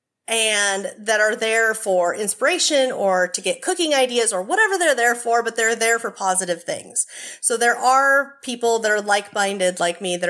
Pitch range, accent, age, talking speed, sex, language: 180-230 Hz, American, 30-49, 185 wpm, female, English